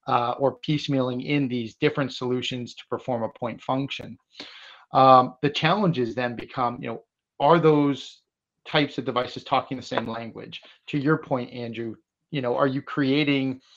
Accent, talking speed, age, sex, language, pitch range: American, 160 wpm, 30-49, male, English, 125-140 Hz